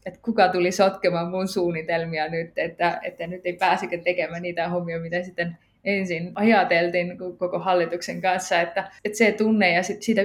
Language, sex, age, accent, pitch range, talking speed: Finnish, female, 20-39, native, 175-195 Hz, 165 wpm